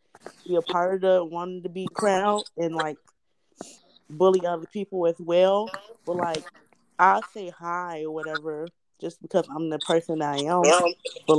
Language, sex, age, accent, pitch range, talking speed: English, female, 20-39, American, 150-180 Hz, 165 wpm